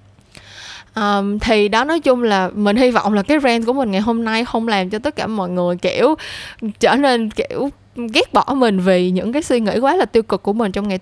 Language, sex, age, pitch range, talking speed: Vietnamese, female, 10-29, 190-255 Hz, 240 wpm